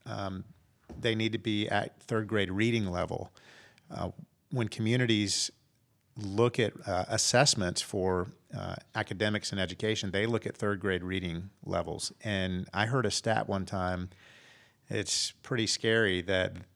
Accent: American